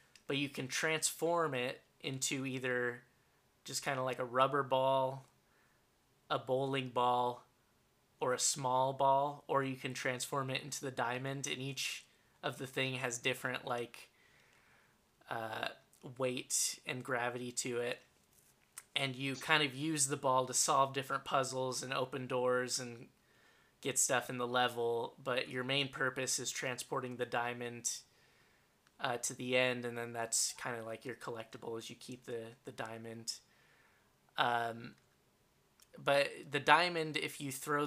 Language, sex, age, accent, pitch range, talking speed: English, male, 20-39, American, 120-135 Hz, 150 wpm